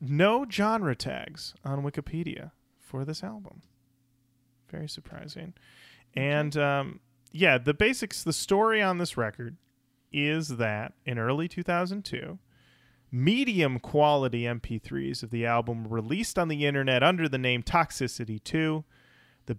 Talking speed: 130 wpm